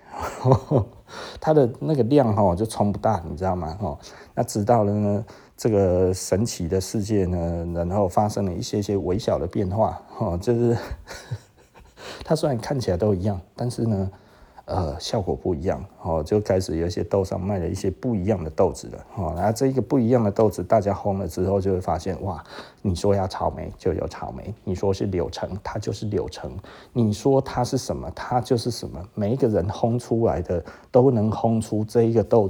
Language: Chinese